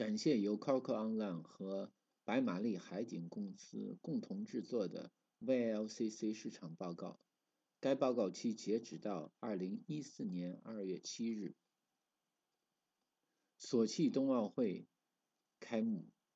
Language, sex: Chinese, male